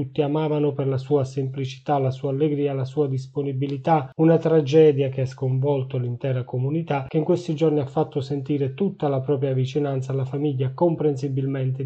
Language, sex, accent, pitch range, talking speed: Italian, male, native, 130-150 Hz, 165 wpm